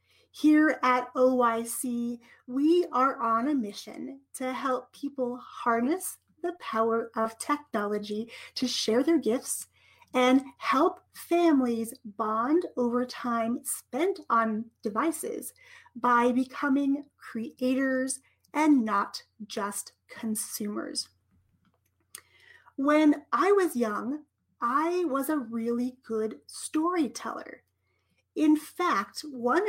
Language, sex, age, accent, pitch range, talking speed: English, female, 30-49, American, 230-295 Hz, 100 wpm